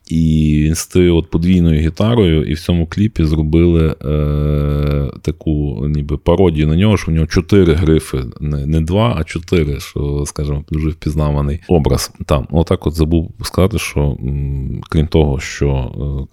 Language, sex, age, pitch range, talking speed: Ukrainian, male, 20-39, 75-95 Hz, 155 wpm